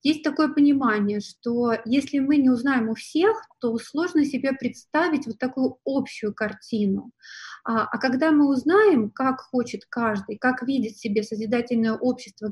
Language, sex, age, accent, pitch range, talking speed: Russian, female, 30-49, native, 225-280 Hz, 145 wpm